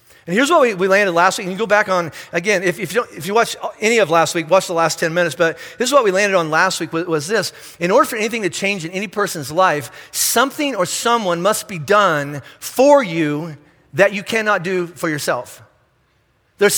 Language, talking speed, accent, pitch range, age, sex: English, 230 wpm, American, 170-235 Hz, 40-59, male